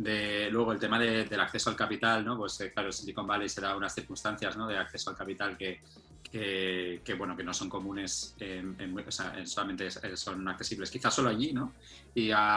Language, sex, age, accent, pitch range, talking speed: Spanish, male, 20-39, Spanish, 100-125 Hz, 195 wpm